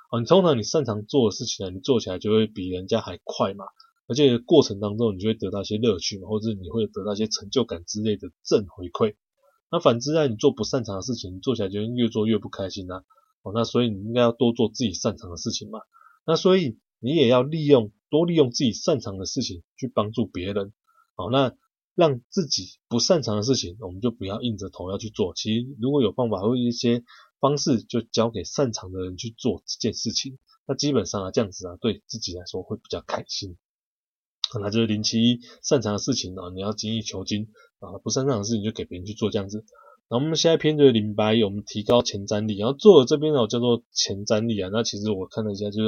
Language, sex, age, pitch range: Chinese, male, 20-39, 100-125 Hz